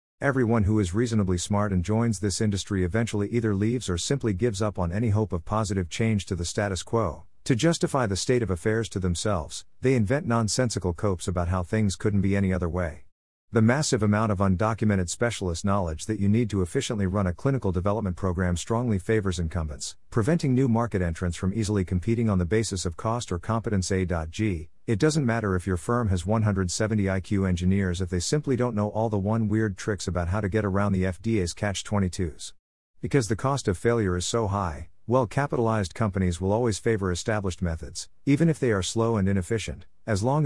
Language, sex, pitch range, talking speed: English, male, 90-115 Hz, 200 wpm